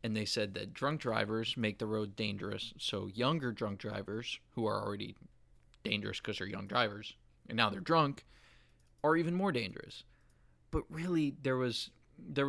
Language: English